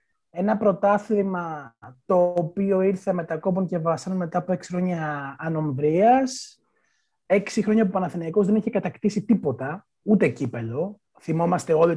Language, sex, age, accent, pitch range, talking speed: Greek, male, 30-49, native, 160-230 Hz, 130 wpm